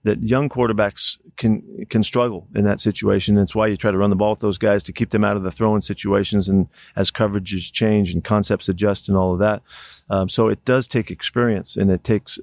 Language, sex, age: English, male, 50-69